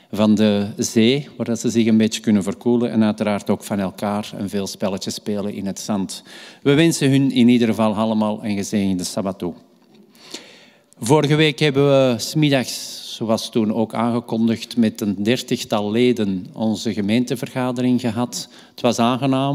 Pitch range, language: 105-125 Hz, Dutch